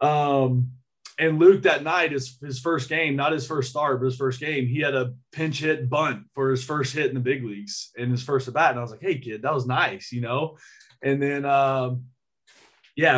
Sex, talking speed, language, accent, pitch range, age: male, 230 wpm, English, American, 125-155 Hz, 20-39